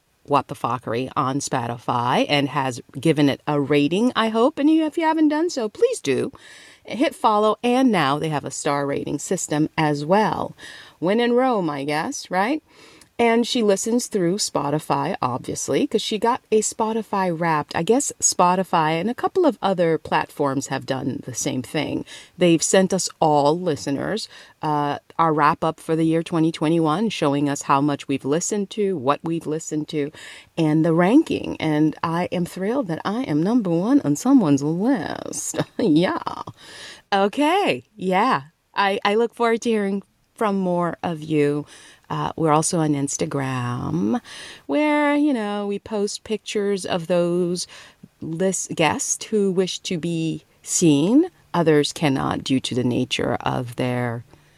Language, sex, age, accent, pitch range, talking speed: English, female, 40-59, American, 145-215 Hz, 160 wpm